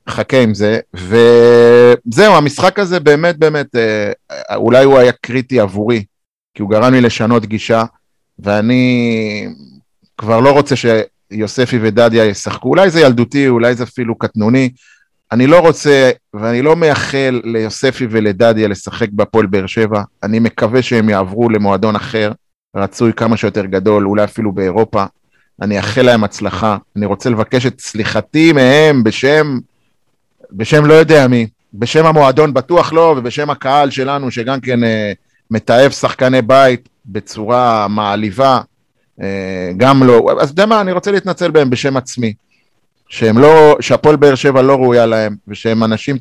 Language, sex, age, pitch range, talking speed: Hebrew, male, 30-49, 110-130 Hz, 145 wpm